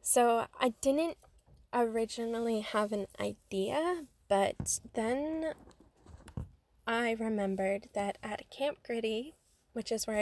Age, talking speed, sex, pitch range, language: 10-29, 105 wpm, female, 205-255 Hz, English